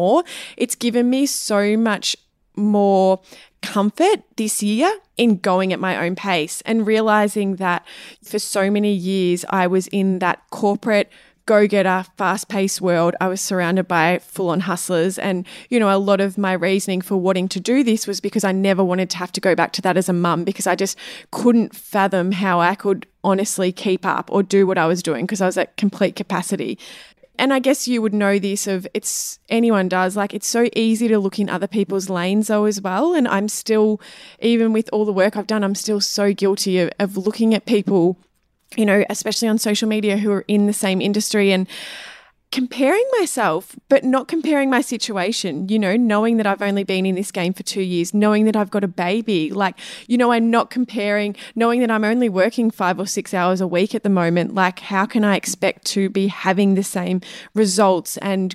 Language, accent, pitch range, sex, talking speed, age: English, Australian, 185-220 Hz, female, 205 wpm, 20-39